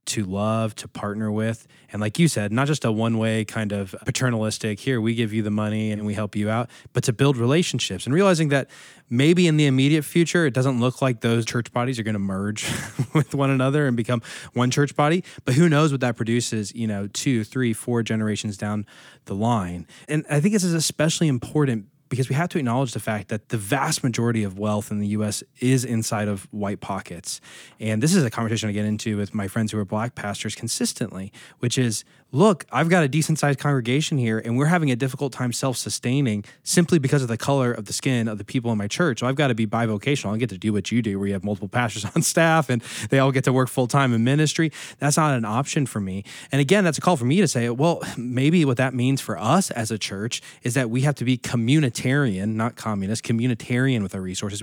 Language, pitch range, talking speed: English, 110-145 Hz, 235 wpm